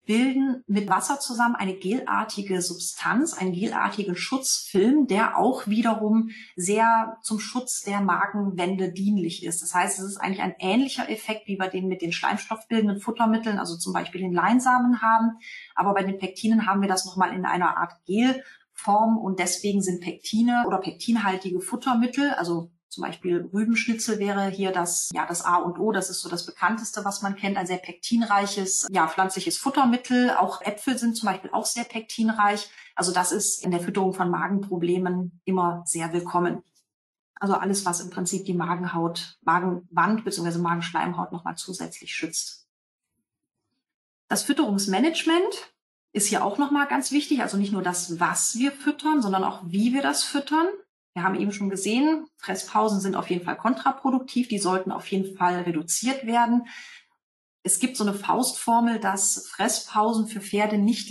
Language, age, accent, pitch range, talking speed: German, 30-49, German, 185-230 Hz, 165 wpm